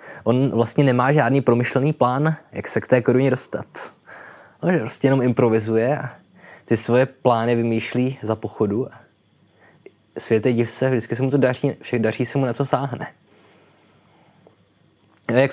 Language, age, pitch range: Czech, 20-39, 110-130 Hz